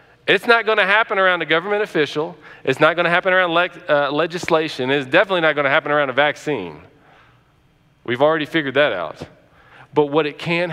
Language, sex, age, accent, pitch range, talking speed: English, male, 40-59, American, 130-175 Hz, 180 wpm